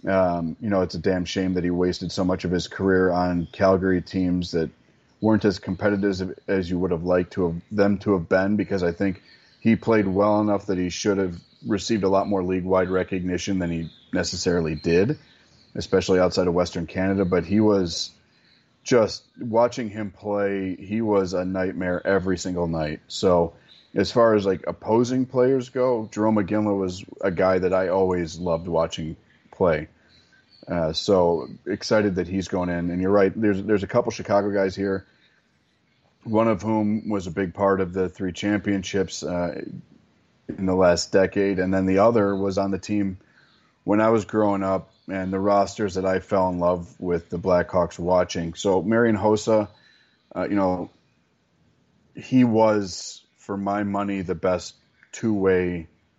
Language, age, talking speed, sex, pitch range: English, 30-49, 175 wpm, male, 90-100 Hz